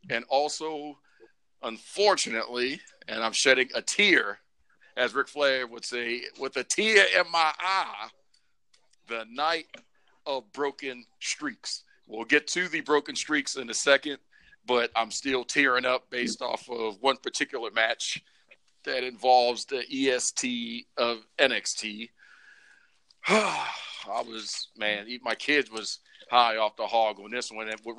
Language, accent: English, American